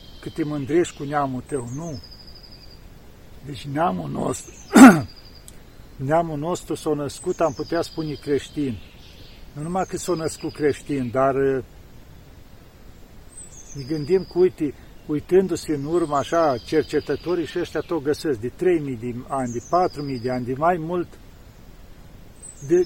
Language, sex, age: Romanian, male, 50-69